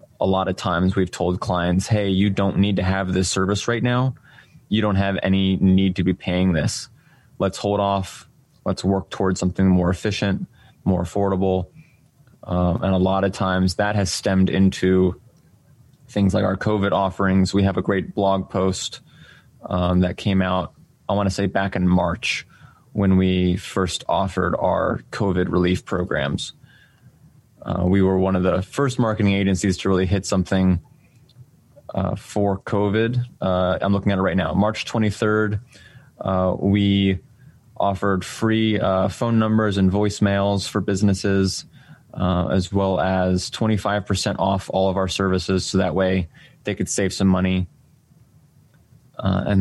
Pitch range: 95-105 Hz